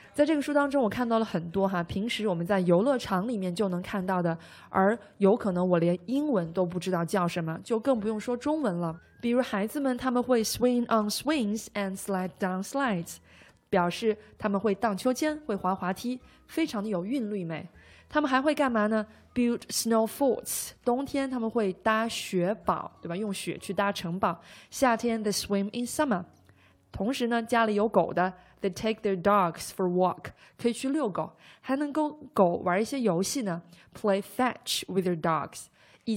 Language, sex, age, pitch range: Chinese, female, 20-39, 180-235 Hz